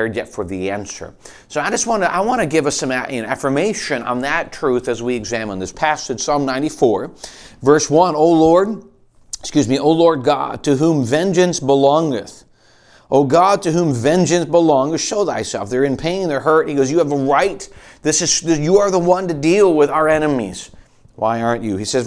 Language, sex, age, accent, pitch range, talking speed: English, male, 40-59, American, 130-175 Hz, 200 wpm